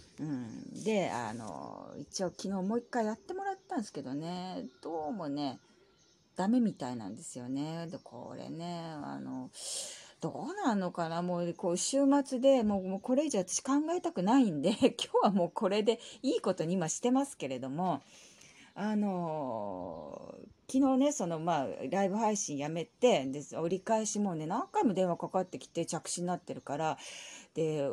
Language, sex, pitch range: Japanese, female, 165-260 Hz